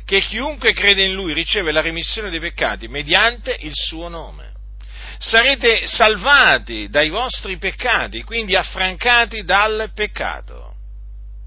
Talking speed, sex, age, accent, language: 120 wpm, male, 50-69, native, Italian